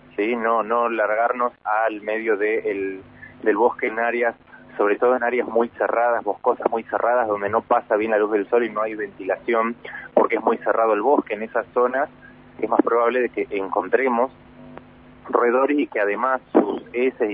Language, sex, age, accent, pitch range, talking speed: Spanish, male, 30-49, Argentinian, 105-130 Hz, 185 wpm